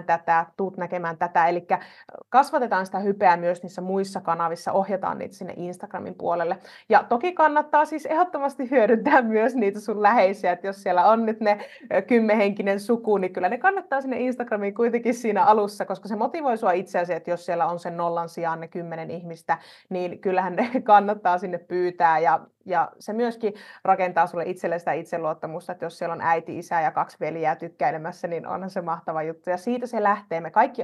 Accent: native